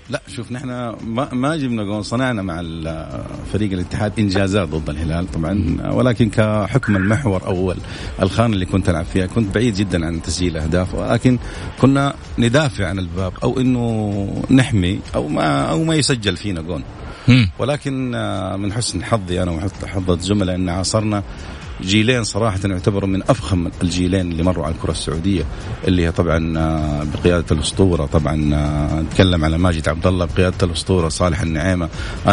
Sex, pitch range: male, 85-115 Hz